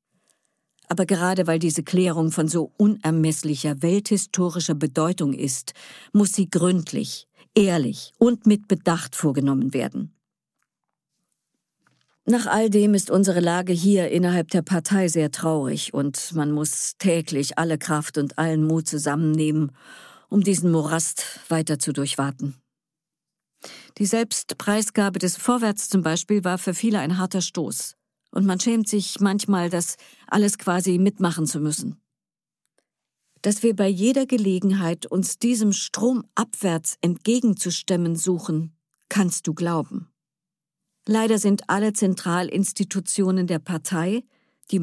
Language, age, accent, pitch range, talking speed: German, 50-69, German, 160-205 Hz, 125 wpm